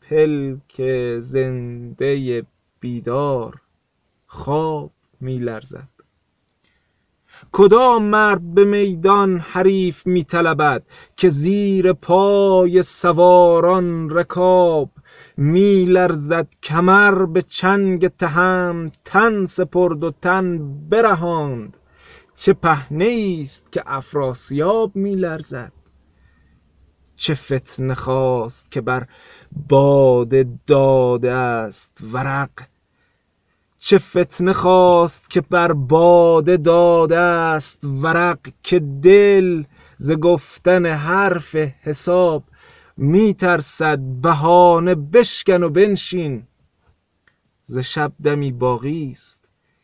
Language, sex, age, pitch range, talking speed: Persian, male, 30-49, 130-180 Hz, 80 wpm